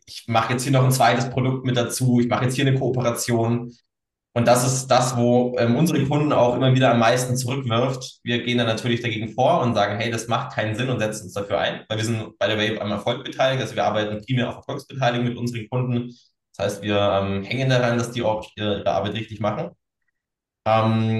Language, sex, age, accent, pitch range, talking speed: German, male, 20-39, German, 110-130 Hz, 230 wpm